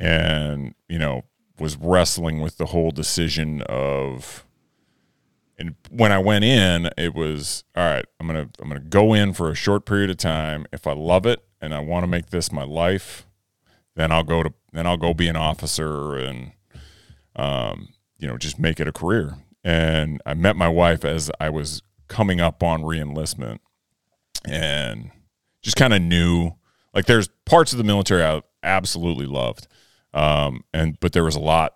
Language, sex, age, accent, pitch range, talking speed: English, male, 30-49, American, 80-95 Hz, 185 wpm